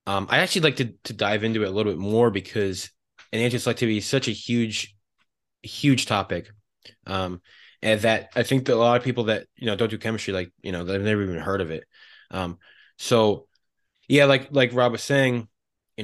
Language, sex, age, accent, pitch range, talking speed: English, male, 20-39, American, 100-125 Hz, 205 wpm